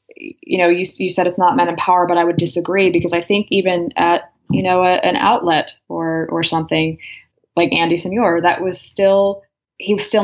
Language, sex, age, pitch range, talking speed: English, female, 20-39, 160-185 Hz, 210 wpm